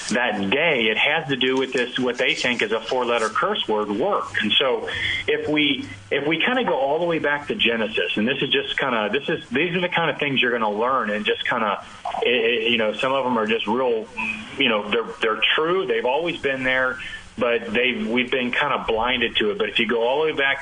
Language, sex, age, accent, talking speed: English, male, 40-59, American, 255 wpm